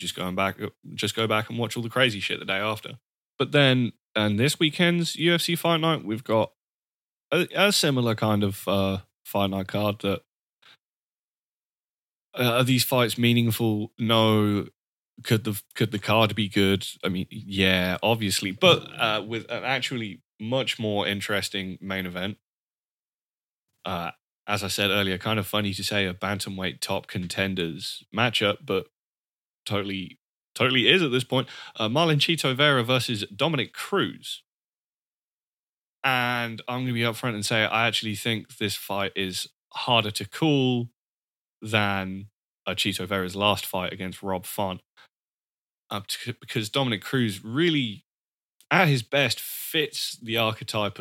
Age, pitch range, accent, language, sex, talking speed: 20-39, 100-125 Hz, British, English, male, 150 wpm